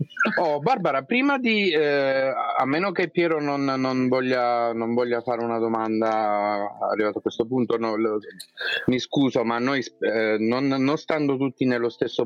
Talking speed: 140 wpm